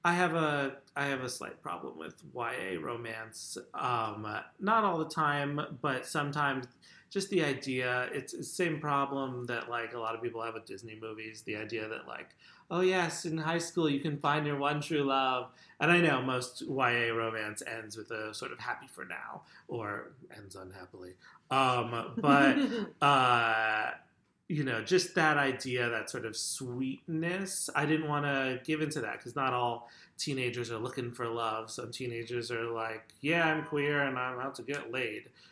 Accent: American